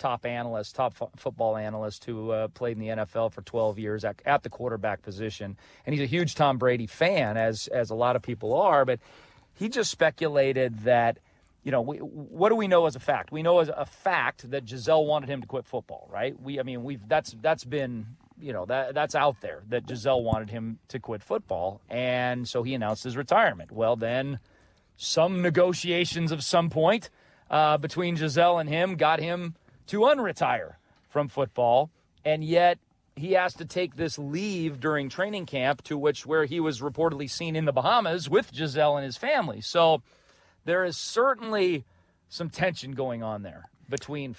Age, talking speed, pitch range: 40-59, 190 wpm, 120-165 Hz